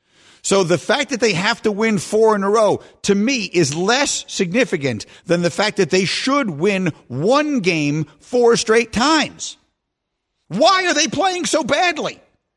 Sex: male